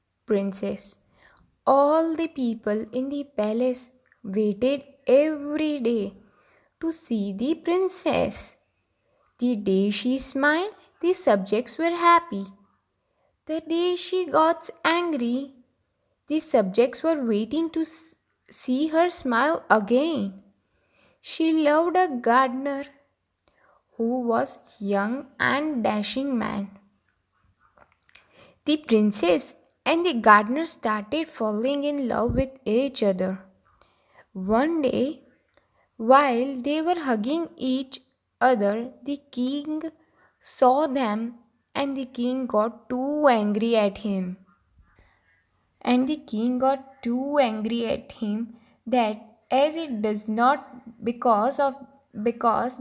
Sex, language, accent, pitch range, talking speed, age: female, English, Indian, 220-290 Hz, 105 wpm, 10-29